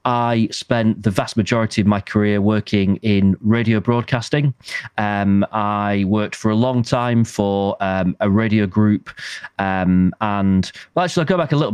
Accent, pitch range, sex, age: British, 100-115 Hz, male, 30-49